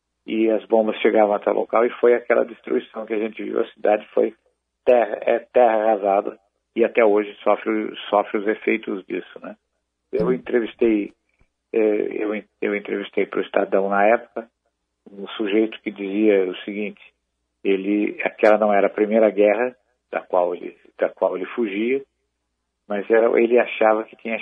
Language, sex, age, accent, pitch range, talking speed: Portuguese, male, 60-79, Brazilian, 105-120 Hz, 165 wpm